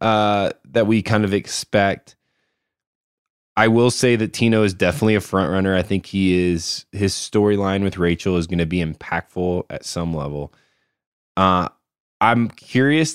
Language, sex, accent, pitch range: English, male, American, 95-115 Hz